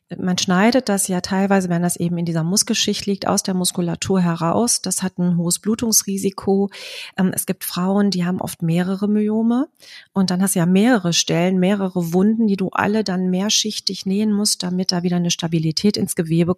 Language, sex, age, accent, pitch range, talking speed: German, female, 30-49, German, 175-205 Hz, 190 wpm